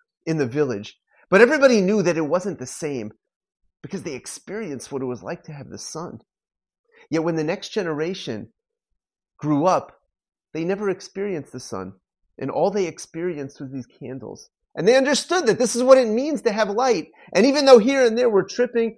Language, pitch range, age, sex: English, 145-230 Hz, 30-49, male